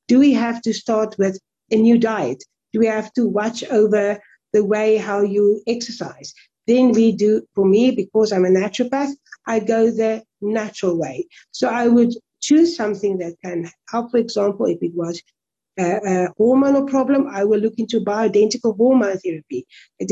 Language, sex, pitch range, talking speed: English, female, 205-245 Hz, 175 wpm